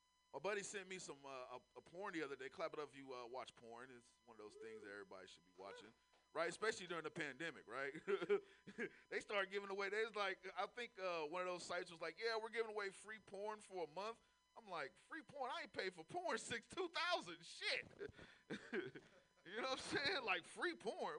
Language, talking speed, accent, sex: English, 230 wpm, American, male